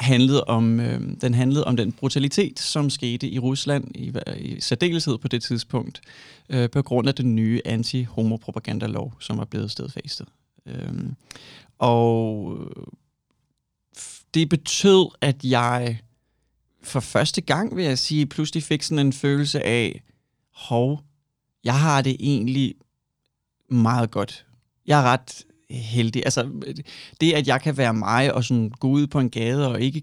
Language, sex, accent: Danish, male, native